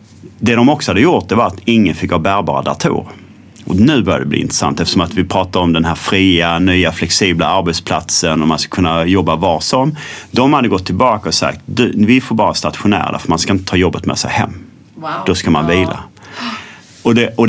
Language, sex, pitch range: Swedish, male, 90-115 Hz